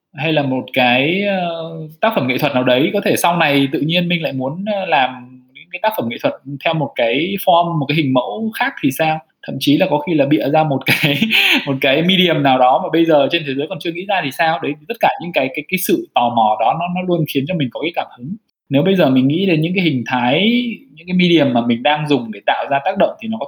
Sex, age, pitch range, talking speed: male, 20-39, 135-180 Hz, 280 wpm